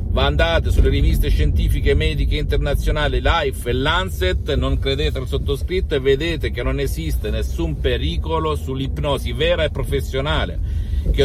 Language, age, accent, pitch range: Italian, 50-69, native, 75-90 Hz